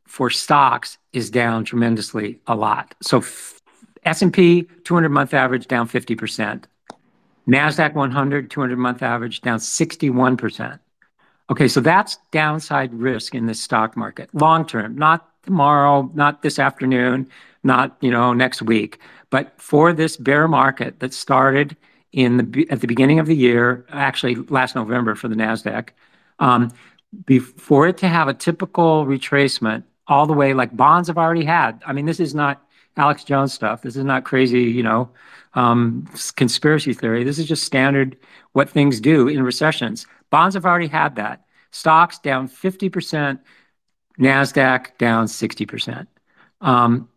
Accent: American